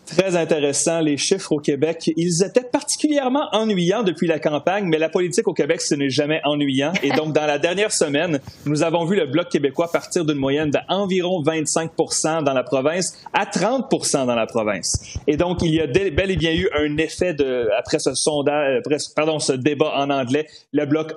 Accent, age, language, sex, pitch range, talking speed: Canadian, 30-49, French, male, 145-175 Hz, 200 wpm